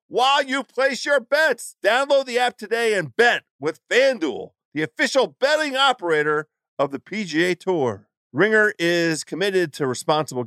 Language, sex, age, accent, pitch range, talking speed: English, male, 50-69, American, 135-195 Hz, 150 wpm